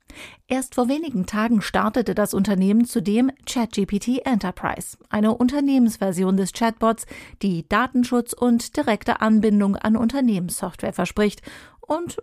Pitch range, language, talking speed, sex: 200-245 Hz, German, 115 wpm, female